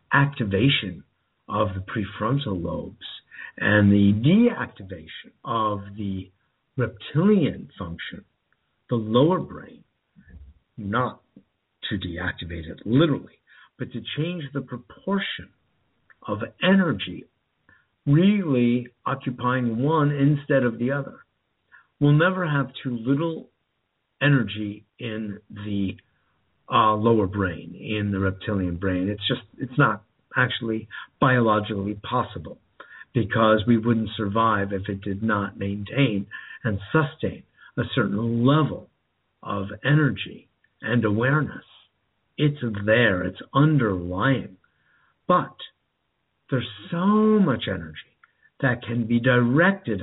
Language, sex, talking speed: English, male, 105 wpm